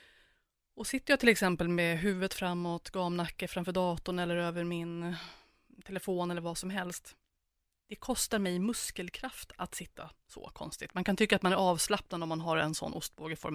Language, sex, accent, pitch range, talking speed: Swedish, female, native, 170-210 Hz, 175 wpm